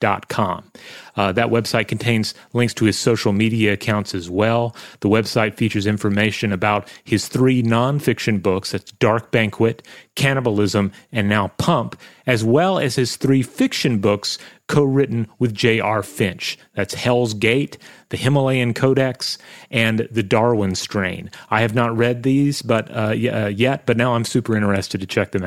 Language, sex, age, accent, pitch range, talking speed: English, male, 30-49, American, 105-125 Hz, 165 wpm